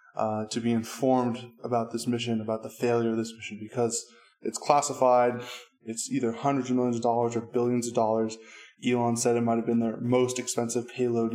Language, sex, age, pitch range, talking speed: English, male, 20-39, 115-135 Hz, 195 wpm